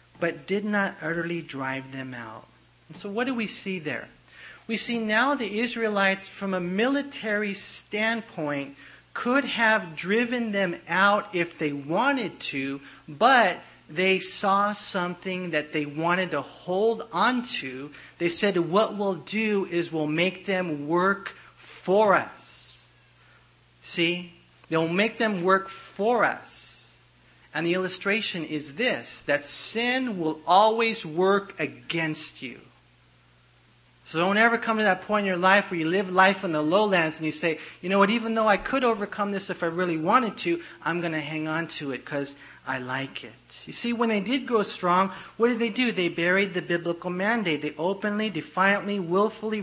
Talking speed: 165 wpm